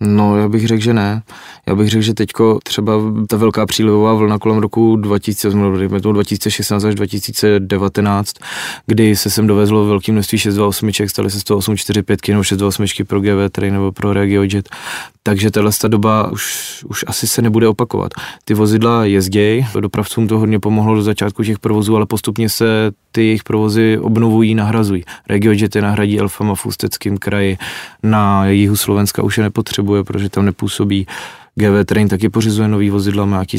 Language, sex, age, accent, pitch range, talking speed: Czech, male, 20-39, native, 100-110 Hz, 170 wpm